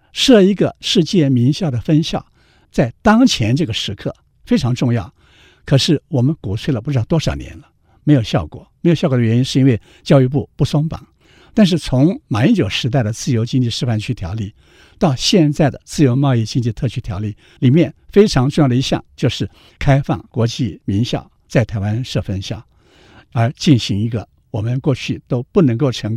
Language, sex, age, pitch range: Chinese, male, 60-79, 115-155 Hz